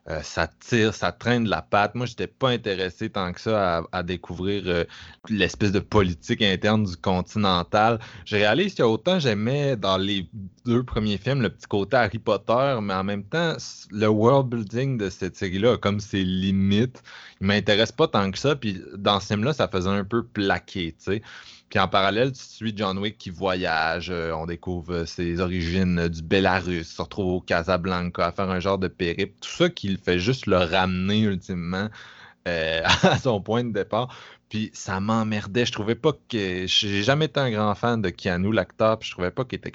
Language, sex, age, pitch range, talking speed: French, male, 20-39, 90-110 Hz, 205 wpm